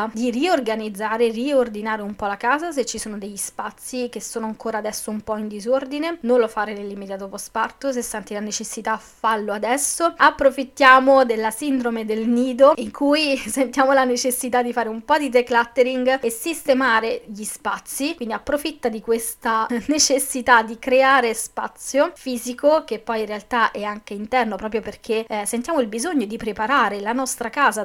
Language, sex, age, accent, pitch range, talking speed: Italian, female, 20-39, native, 215-260 Hz, 170 wpm